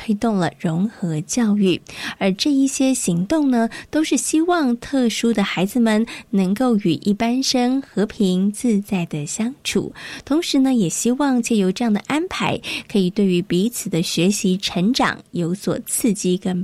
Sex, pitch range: female, 190-255 Hz